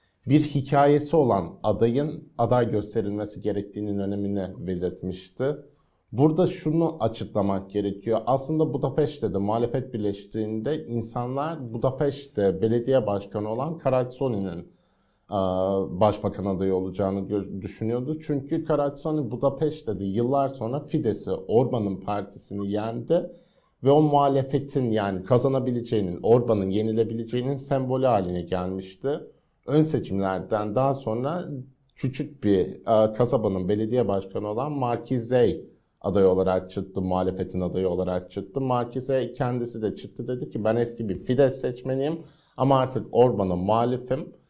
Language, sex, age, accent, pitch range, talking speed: Turkish, male, 50-69, native, 100-135 Hz, 110 wpm